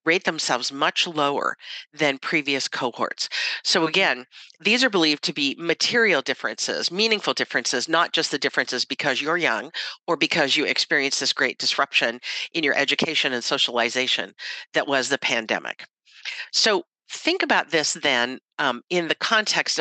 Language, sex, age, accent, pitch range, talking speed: English, female, 50-69, American, 140-185 Hz, 150 wpm